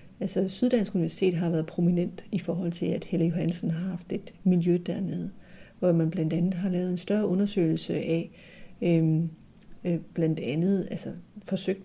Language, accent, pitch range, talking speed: Danish, native, 175-200 Hz, 165 wpm